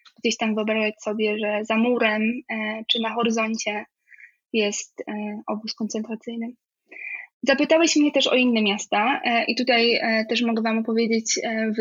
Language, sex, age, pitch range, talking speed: Polish, female, 20-39, 220-255 Hz, 130 wpm